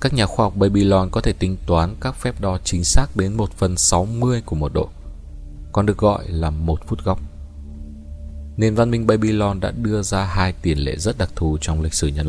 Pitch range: 80-110 Hz